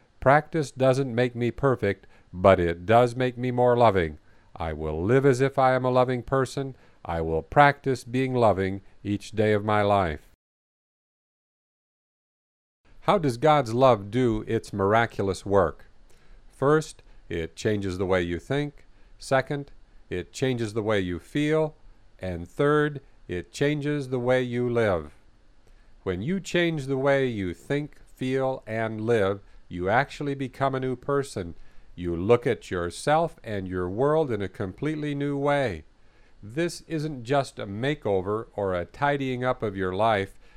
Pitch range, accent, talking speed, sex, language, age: 100-140 Hz, American, 150 wpm, male, English, 50-69